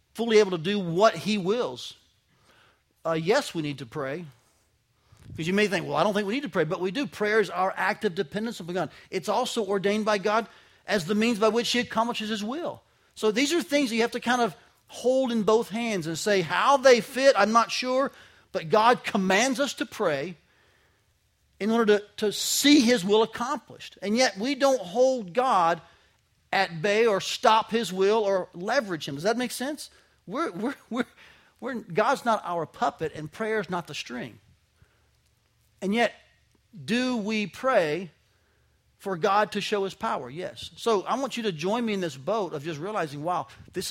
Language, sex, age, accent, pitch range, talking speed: English, male, 40-59, American, 155-225 Hz, 190 wpm